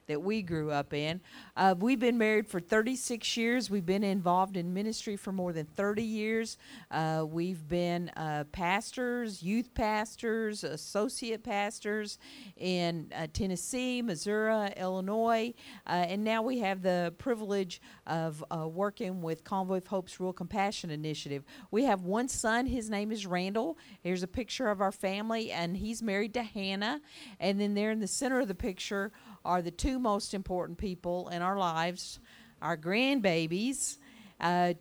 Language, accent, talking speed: English, American, 160 wpm